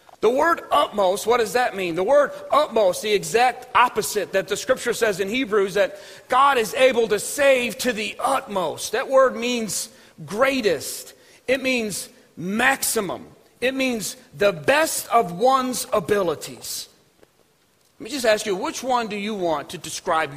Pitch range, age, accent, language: 200-265 Hz, 40-59, American, English